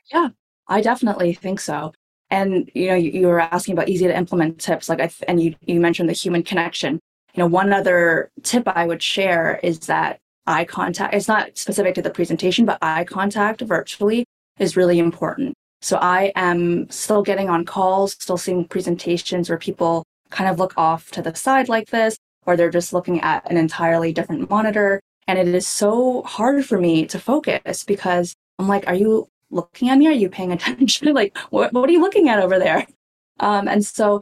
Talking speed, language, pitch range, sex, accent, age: 200 wpm, English, 170-205 Hz, female, American, 20-39